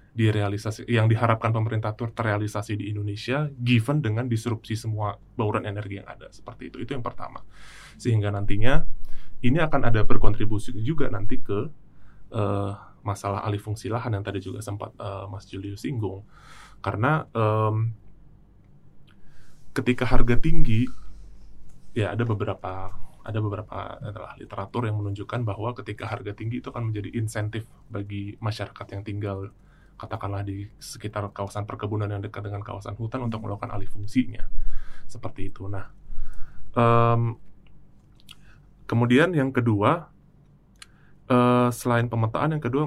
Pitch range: 100-120 Hz